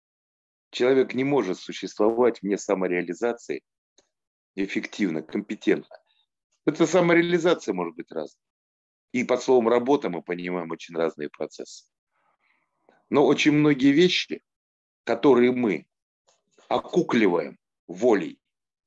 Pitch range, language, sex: 100-150 Hz, Russian, male